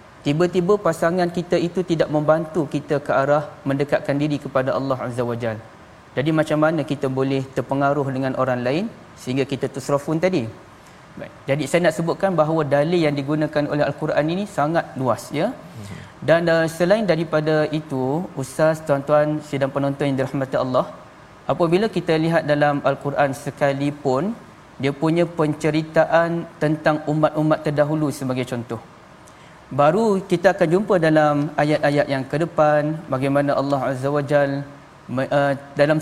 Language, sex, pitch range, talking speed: Malayalam, male, 140-160 Hz, 140 wpm